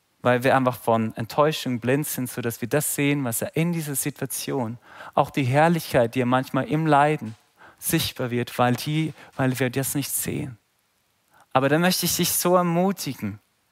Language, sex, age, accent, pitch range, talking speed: German, male, 40-59, German, 140-180 Hz, 175 wpm